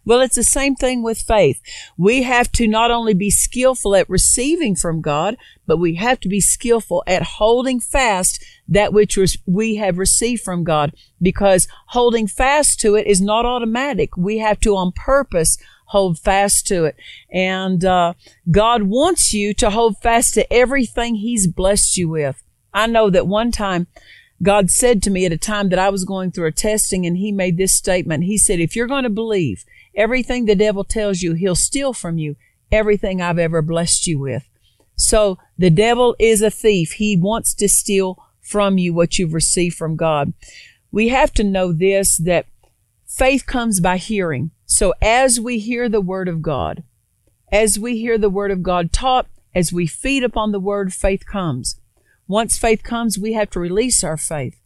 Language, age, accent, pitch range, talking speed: English, 50-69, American, 175-225 Hz, 190 wpm